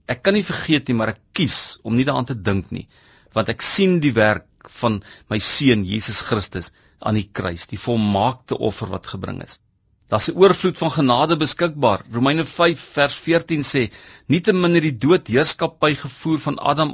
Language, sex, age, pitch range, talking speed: English, male, 50-69, 120-170 Hz, 195 wpm